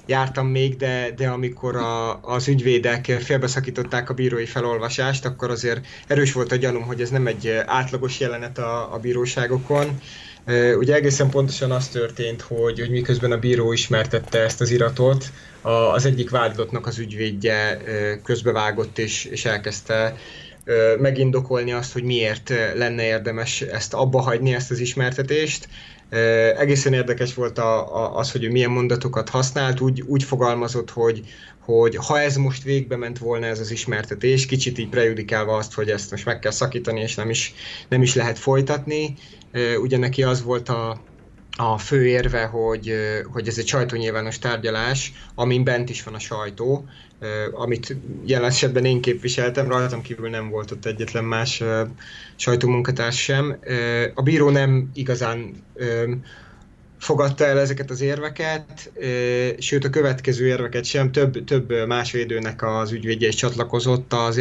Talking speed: 150 wpm